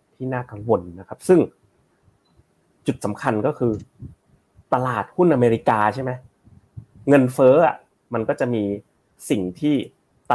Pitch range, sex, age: 105-130 Hz, male, 30-49